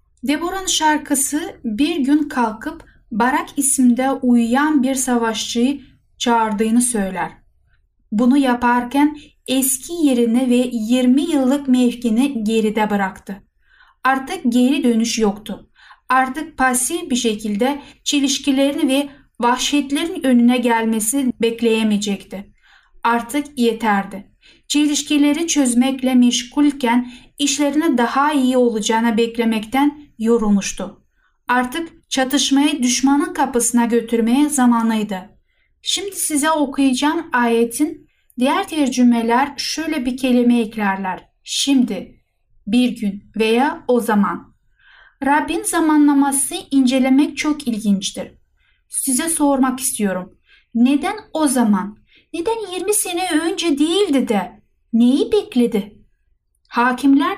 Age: 10-29